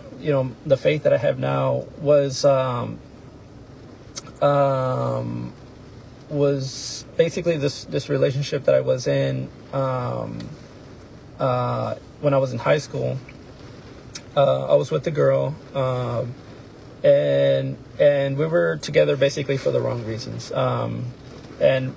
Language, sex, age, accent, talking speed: English, male, 30-49, American, 130 wpm